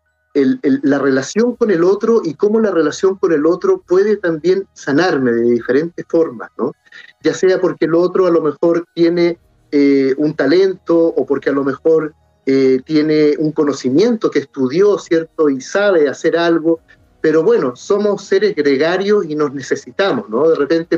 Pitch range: 150-220 Hz